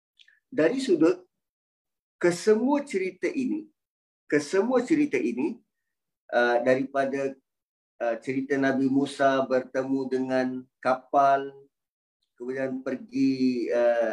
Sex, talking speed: male, 70 wpm